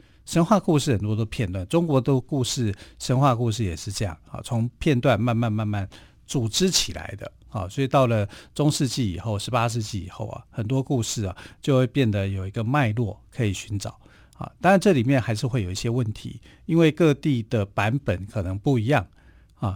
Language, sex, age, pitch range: Chinese, male, 50-69, 100-135 Hz